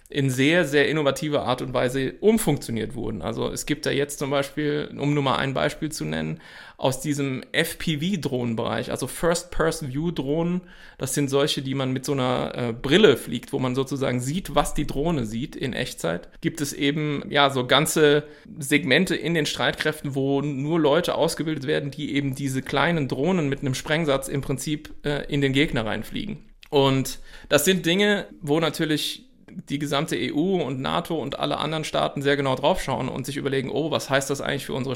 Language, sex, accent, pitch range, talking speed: German, male, German, 135-160 Hz, 185 wpm